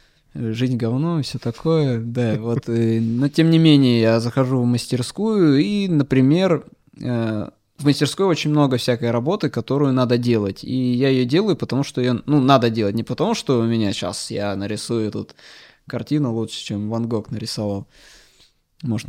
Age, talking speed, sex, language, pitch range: 20-39, 165 wpm, male, Russian, 115-145 Hz